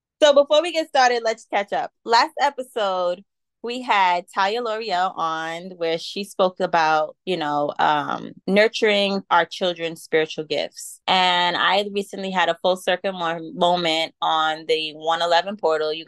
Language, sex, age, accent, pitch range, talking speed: English, female, 20-39, American, 155-195 Hz, 150 wpm